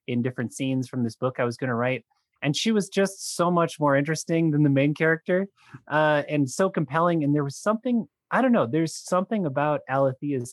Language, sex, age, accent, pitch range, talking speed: English, male, 30-49, American, 115-150 Hz, 205 wpm